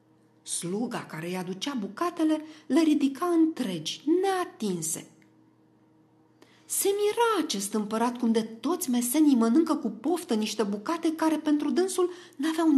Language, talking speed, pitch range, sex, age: Romanian, 120 wpm, 215-345 Hz, female, 40-59